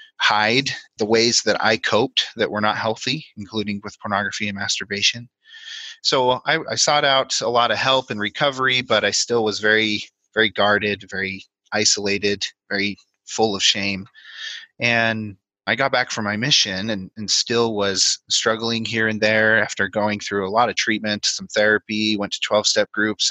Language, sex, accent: English, male, American